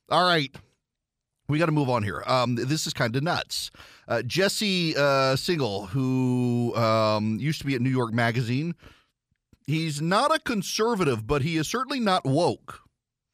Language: English